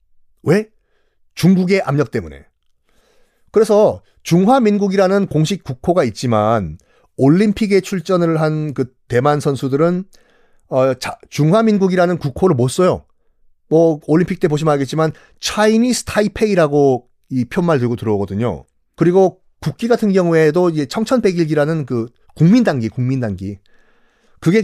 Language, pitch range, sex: Korean, 130-200 Hz, male